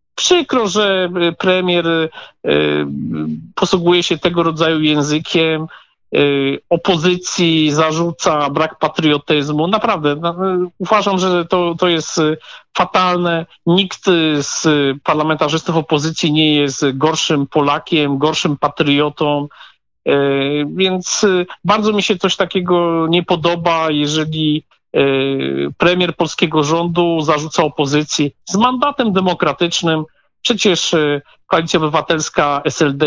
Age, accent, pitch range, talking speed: 50-69, native, 150-185 Hz, 90 wpm